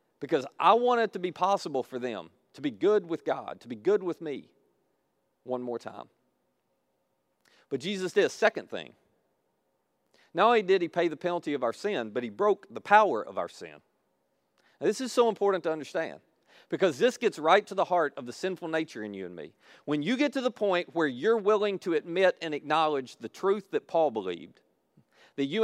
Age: 40-59